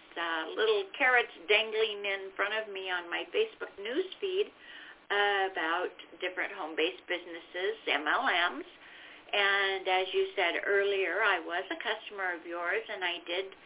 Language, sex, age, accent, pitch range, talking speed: English, female, 50-69, American, 195-265 Hz, 140 wpm